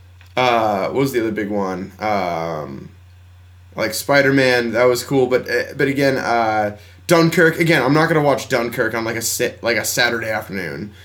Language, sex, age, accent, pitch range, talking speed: English, male, 20-39, American, 100-140 Hz, 180 wpm